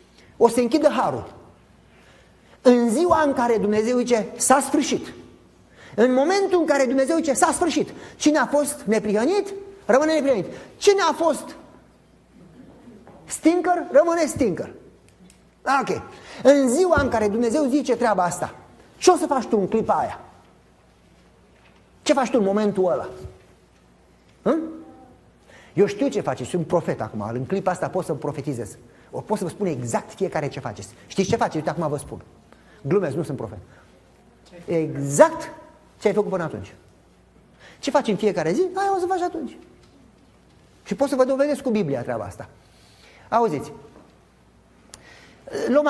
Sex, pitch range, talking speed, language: male, 180-290 Hz, 150 wpm, Romanian